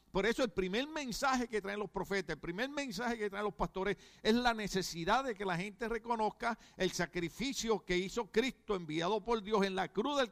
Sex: male